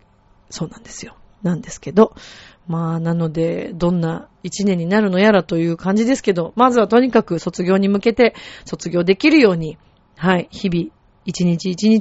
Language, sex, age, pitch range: Japanese, female, 40-59, 175-235 Hz